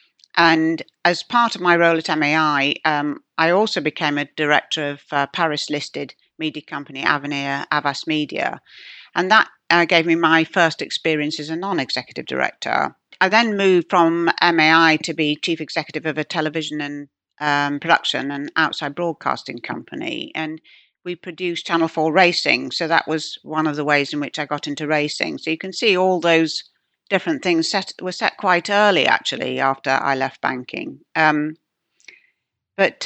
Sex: female